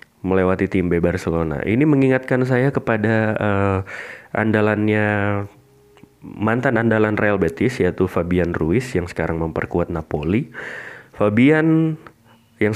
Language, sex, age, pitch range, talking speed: Indonesian, male, 30-49, 90-115 Hz, 110 wpm